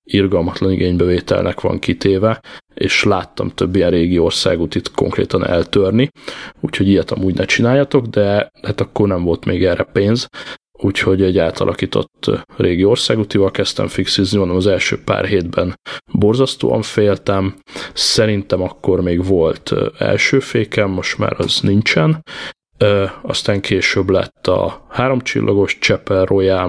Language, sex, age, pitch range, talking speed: Hungarian, male, 20-39, 95-110 Hz, 125 wpm